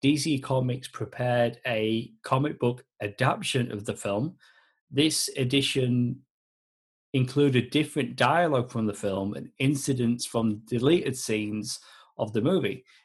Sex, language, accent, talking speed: male, English, British, 120 wpm